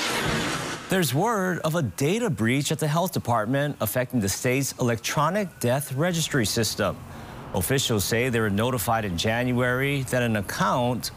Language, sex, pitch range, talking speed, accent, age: English, male, 105-145 Hz, 145 wpm, American, 40-59